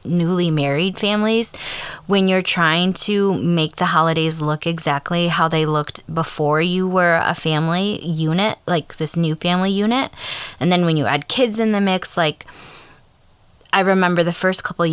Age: 20-39